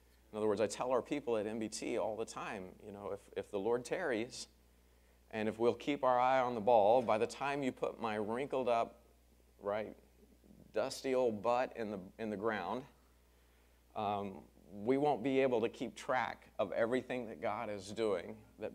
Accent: American